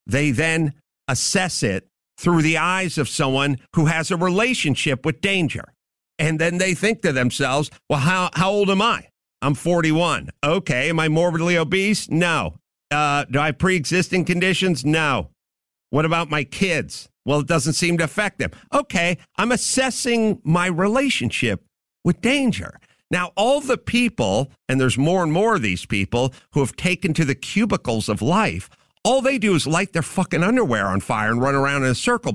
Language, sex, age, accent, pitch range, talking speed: English, male, 50-69, American, 135-185 Hz, 180 wpm